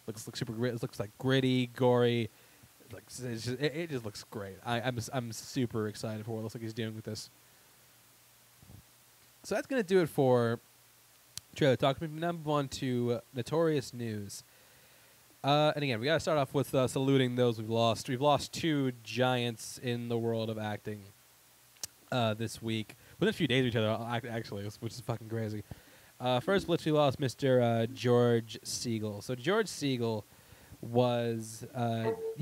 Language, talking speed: English, 190 wpm